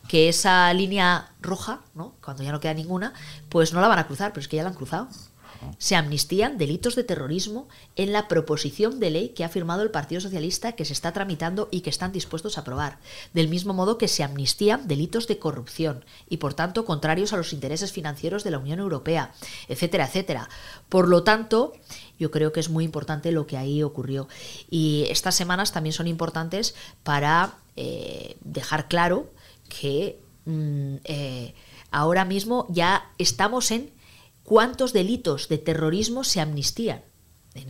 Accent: Spanish